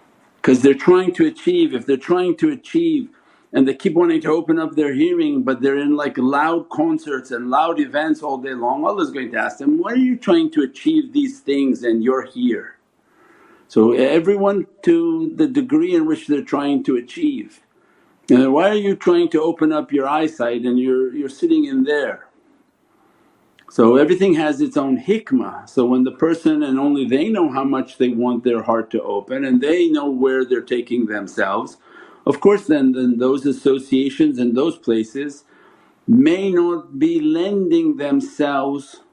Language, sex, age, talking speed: English, male, 50-69, 180 wpm